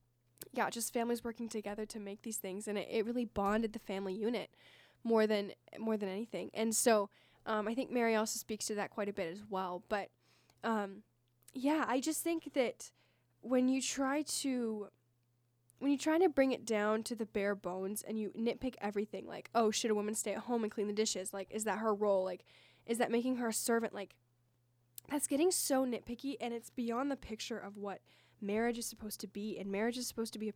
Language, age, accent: English, 10-29, American